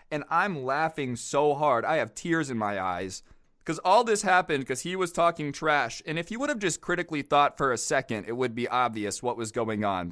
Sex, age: male, 20-39